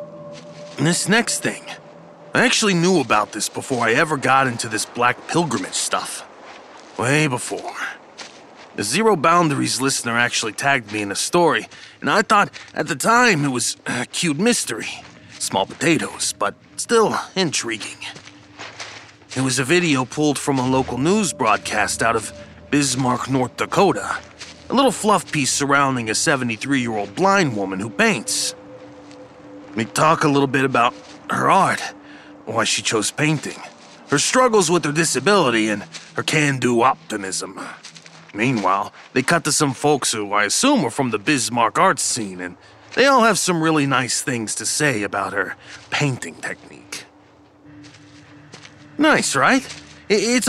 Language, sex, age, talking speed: English, male, 30-49, 145 wpm